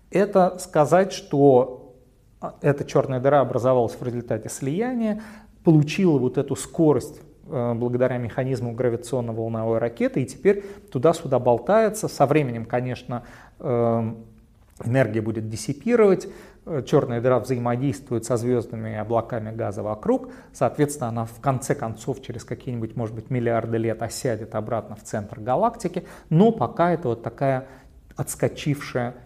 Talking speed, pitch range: 120 wpm, 120-155 Hz